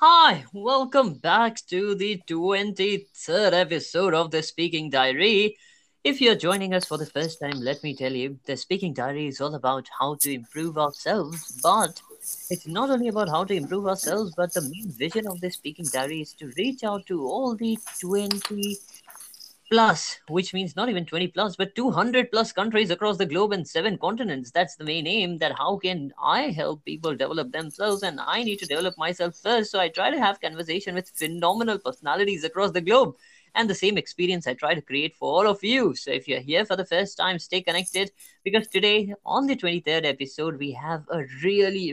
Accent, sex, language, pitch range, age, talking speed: native, female, Hindi, 160-205 Hz, 20-39, 195 wpm